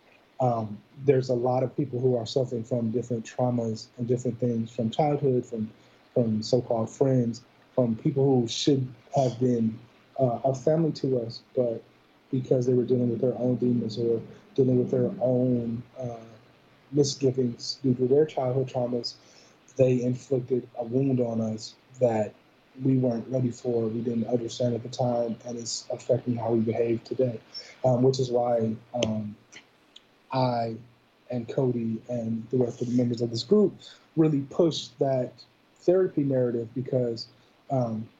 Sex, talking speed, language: male, 160 wpm, English